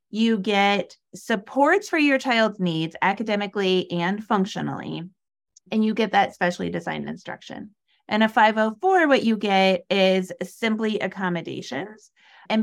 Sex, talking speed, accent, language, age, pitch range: female, 130 wpm, American, English, 30-49, 175-220 Hz